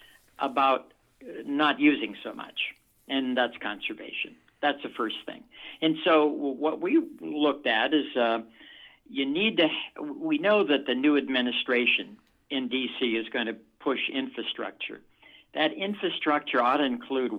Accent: American